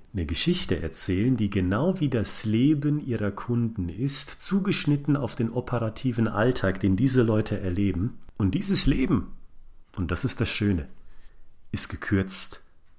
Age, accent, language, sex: 40-59, German, German, male